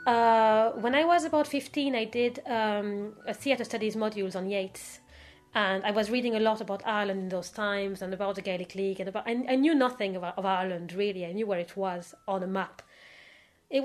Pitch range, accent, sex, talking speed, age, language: 195-255 Hz, French, female, 215 wpm, 30-49, English